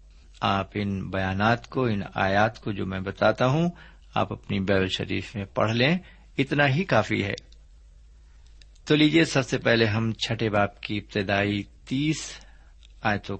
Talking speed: 150 wpm